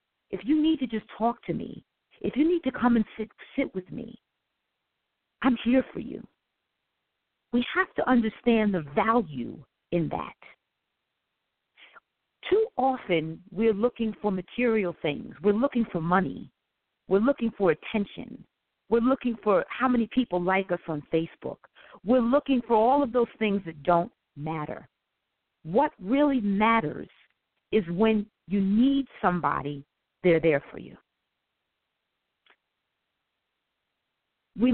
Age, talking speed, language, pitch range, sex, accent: 50-69, 135 wpm, English, 170-235 Hz, female, American